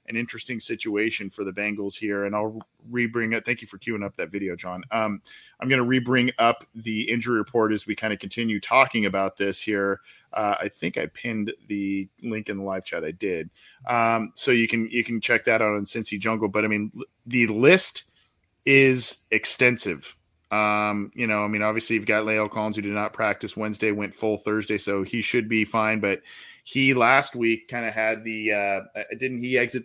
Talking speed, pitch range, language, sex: 210 wpm, 105-120 Hz, English, male